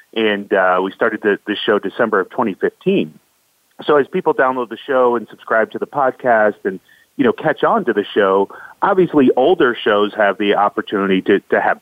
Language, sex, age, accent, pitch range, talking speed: English, male, 30-49, American, 105-130 Hz, 195 wpm